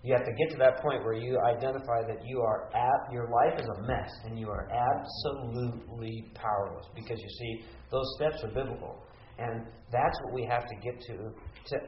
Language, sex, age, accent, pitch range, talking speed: English, male, 50-69, American, 105-130 Hz, 200 wpm